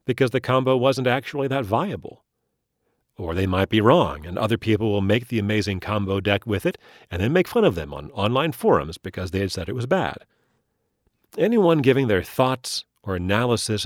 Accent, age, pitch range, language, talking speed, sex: American, 40-59, 95-140 Hz, English, 195 wpm, male